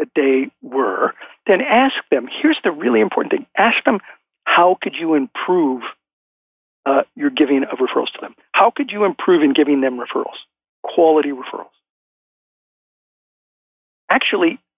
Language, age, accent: English, 50-69, American